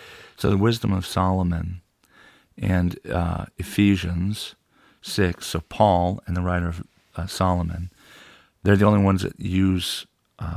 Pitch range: 85-100 Hz